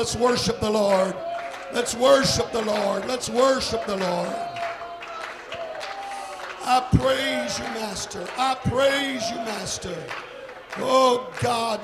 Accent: American